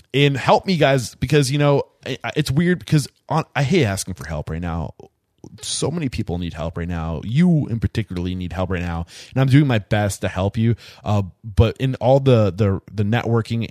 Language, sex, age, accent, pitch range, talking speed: English, male, 20-39, American, 95-120 Hz, 200 wpm